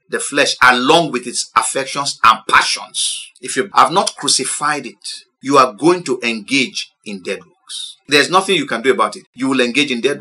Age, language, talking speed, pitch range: 50-69, English, 200 wpm, 140-225 Hz